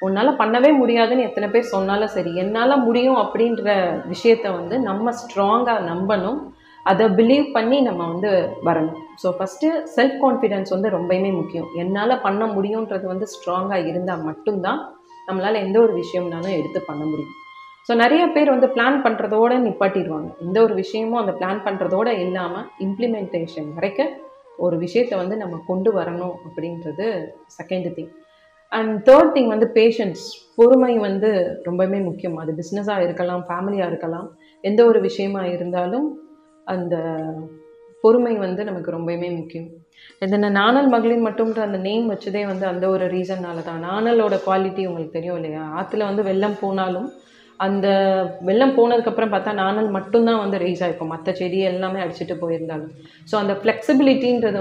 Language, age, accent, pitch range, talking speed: Tamil, 30-49, native, 180-230 Hz, 140 wpm